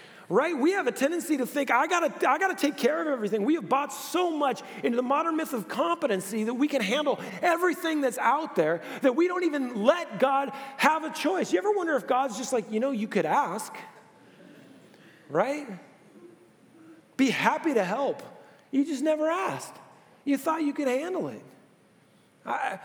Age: 40-59